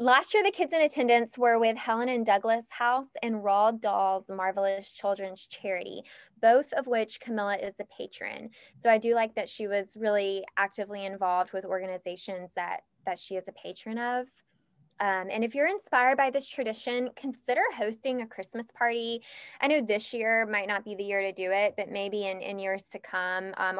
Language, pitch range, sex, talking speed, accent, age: English, 195-240 Hz, female, 195 wpm, American, 20-39